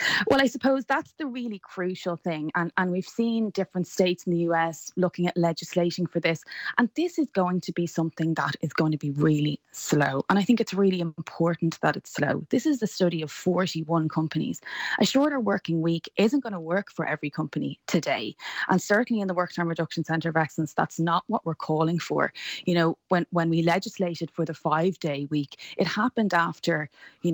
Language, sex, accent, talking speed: English, female, Irish, 205 wpm